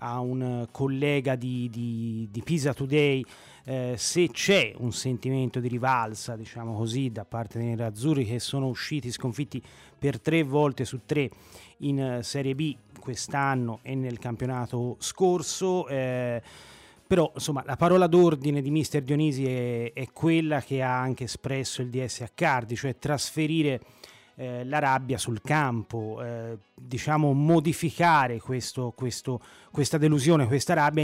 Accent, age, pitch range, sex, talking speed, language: native, 30-49, 120-150 Hz, male, 145 wpm, Italian